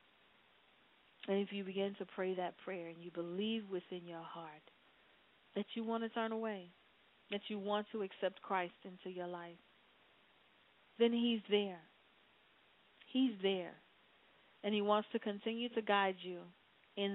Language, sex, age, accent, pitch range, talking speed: English, female, 40-59, American, 170-200 Hz, 150 wpm